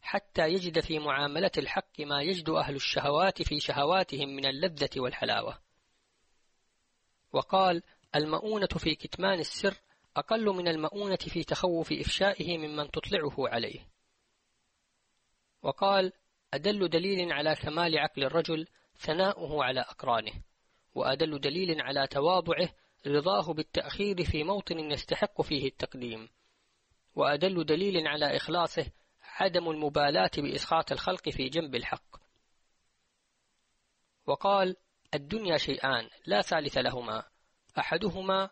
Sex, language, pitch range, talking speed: female, Arabic, 140-185 Hz, 105 wpm